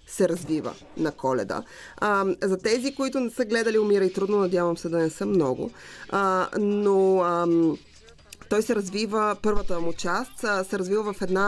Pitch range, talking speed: 170-205 Hz, 155 wpm